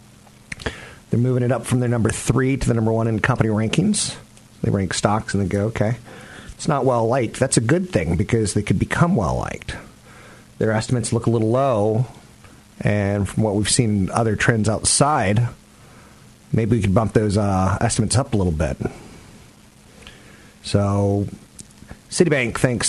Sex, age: male, 40-59